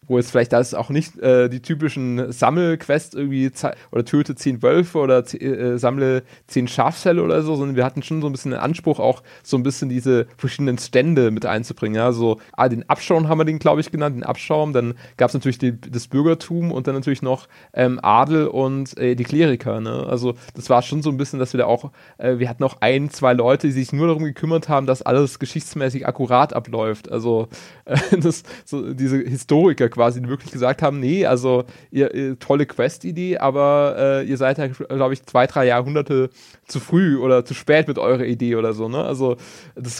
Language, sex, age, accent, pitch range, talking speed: German, male, 30-49, German, 125-150 Hz, 210 wpm